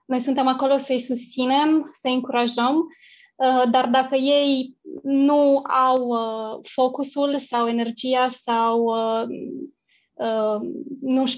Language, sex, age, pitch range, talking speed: Romanian, female, 20-39, 240-285 Hz, 90 wpm